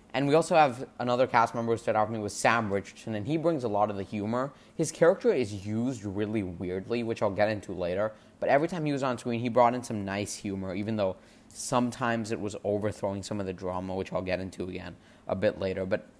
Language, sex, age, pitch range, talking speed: English, male, 20-39, 100-120 Hz, 245 wpm